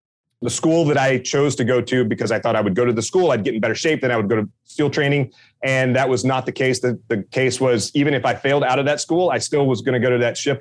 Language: English